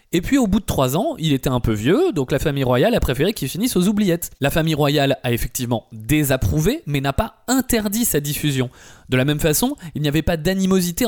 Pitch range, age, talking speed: 135-200 Hz, 20-39, 235 wpm